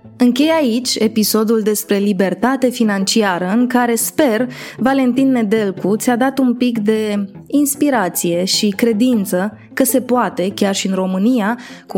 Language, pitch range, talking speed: Romanian, 195-240 Hz, 135 wpm